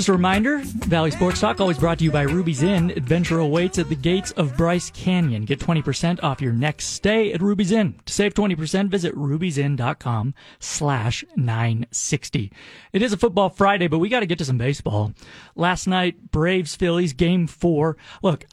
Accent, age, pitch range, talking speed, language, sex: American, 30-49, 140-185 Hz, 180 wpm, English, male